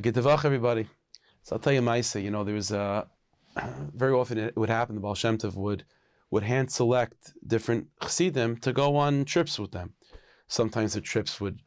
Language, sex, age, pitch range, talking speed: English, male, 30-49, 105-130 Hz, 185 wpm